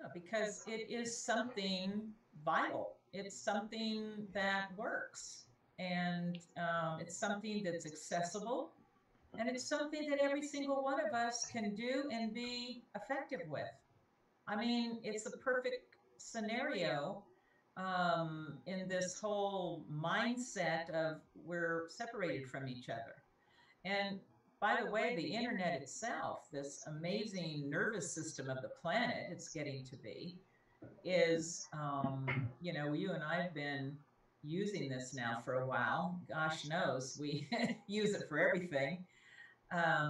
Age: 50-69